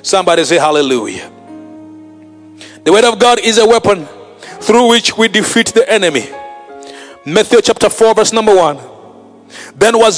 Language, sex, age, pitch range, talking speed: English, male, 30-49, 200-265 Hz, 140 wpm